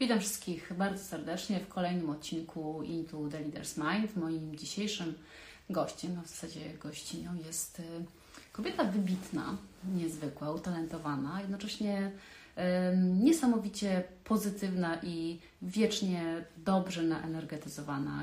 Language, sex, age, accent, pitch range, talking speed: Polish, female, 30-49, native, 160-185 Hz, 105 wpm